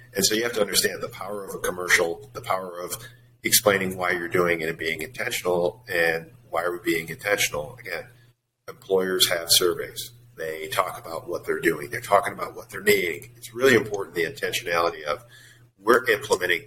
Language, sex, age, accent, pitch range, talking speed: English, male, 40-59, American, 95-125 Hz, 185 wpm